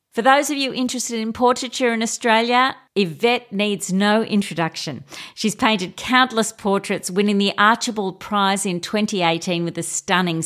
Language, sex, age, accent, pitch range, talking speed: English, female, 50-69, Australian, 165-210 Hz, 150 wpm